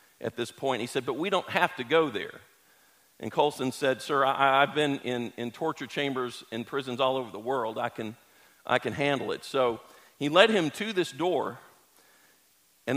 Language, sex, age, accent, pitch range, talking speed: English, male, 50-69, American, 135-175 Hz, 200 wpm